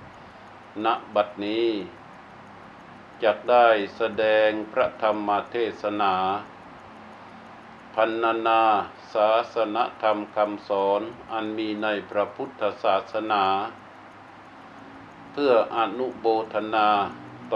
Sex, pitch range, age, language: male, 100-115 Hz, 60-79, Thai